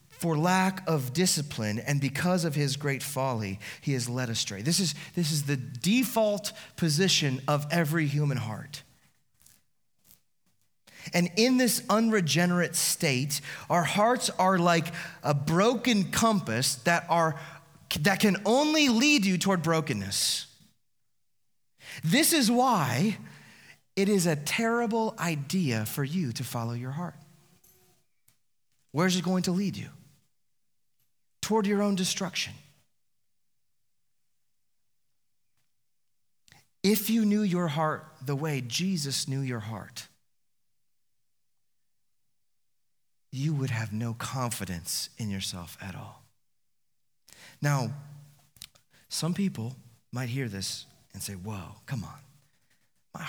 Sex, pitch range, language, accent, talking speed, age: male, 125-185 Hz, English, American, 115 wpm, 30-49